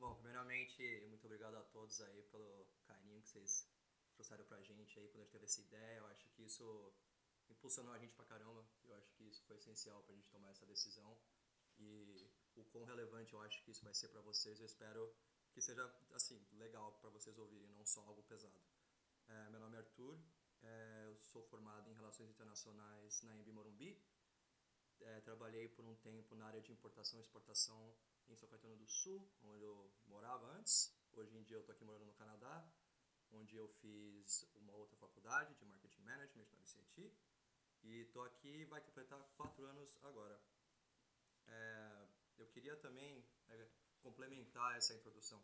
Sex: male